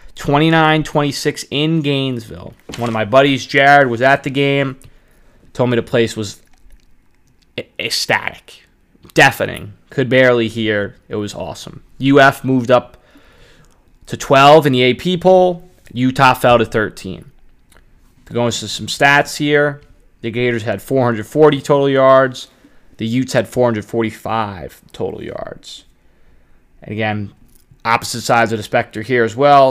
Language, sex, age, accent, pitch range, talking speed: English, male, 20-39, American, 115-140 Hz, 130 wpm